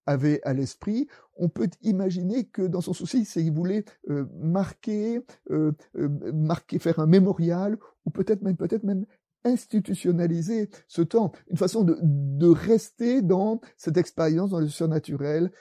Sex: male